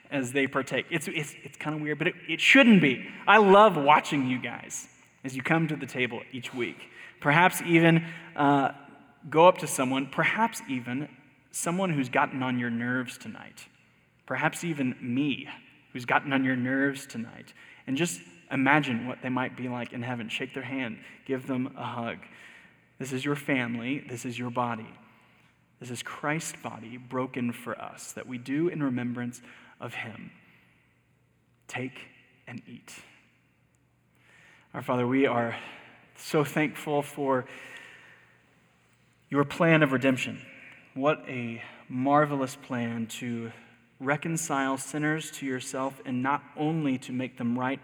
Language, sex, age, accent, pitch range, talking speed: English, male, 20-39, American, 125-145 Hz, 150 wpm